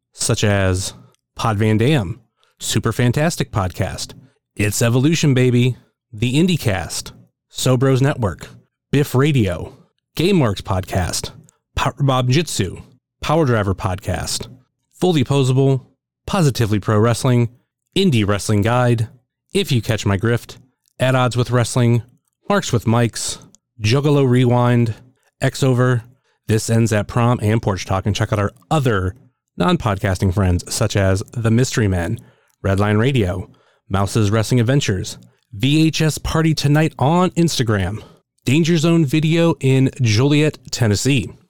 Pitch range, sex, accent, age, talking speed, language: 105-135 Hz, male, American, 30-49, 125 wpm, English